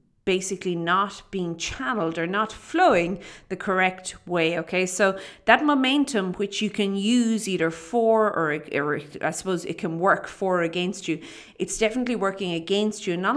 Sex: female